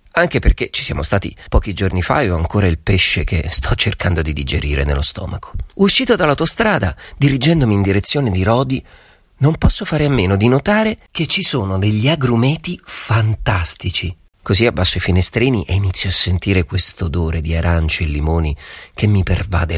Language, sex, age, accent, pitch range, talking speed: Italian, male, 40-59, native, 90-140 Hz, 175 wpm